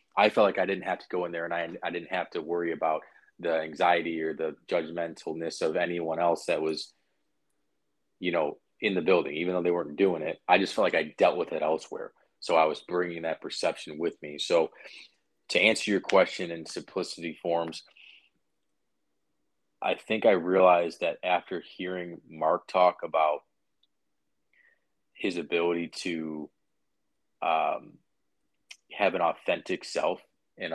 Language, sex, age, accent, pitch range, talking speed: English, male, 30-49, American, 80-90 Hz, 160 wpm